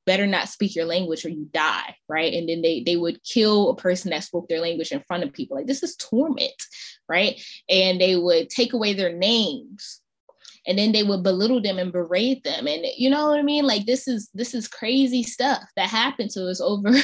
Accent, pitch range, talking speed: American, 175-230 Hz, 230 wpm